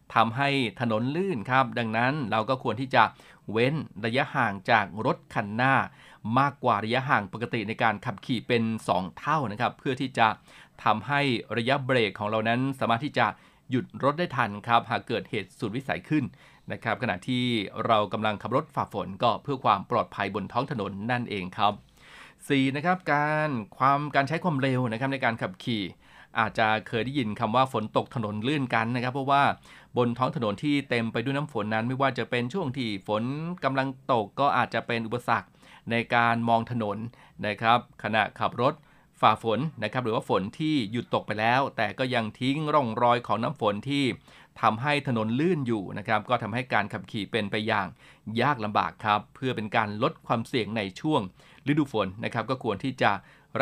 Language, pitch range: Thai, 110-135 Hz